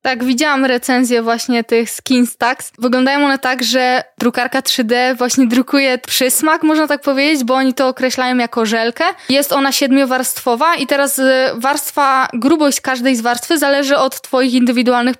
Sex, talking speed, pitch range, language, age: female, 150 wpm, 250-275 Hz, Polish, 20-39